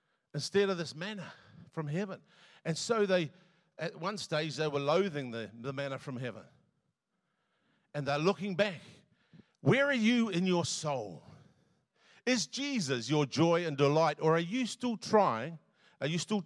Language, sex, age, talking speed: English, male, 50-69, 160 wpm